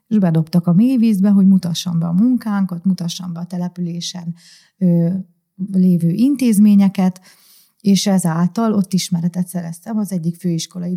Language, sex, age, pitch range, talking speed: Hungarian, female, 30-49, 175-200 Hz, 130 wpm